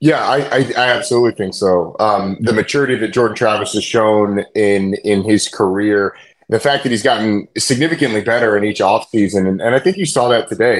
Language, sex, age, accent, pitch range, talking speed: English, male, 30-49, American, 105-140 Hz, 205 wpm